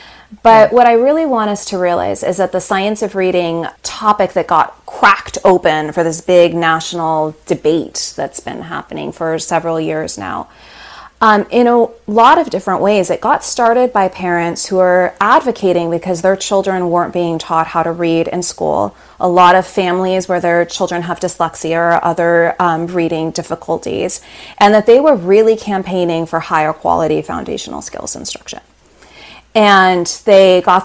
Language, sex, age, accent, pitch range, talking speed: English, female, 30-49, American, 160-195 Hz, 165 wpm